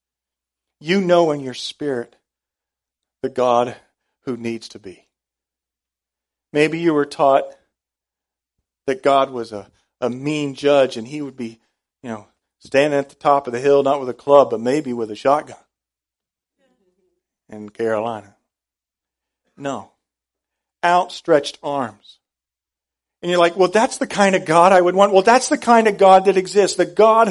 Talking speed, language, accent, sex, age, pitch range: 155 wpm, English, American, male, 40-59, 135-210 Hz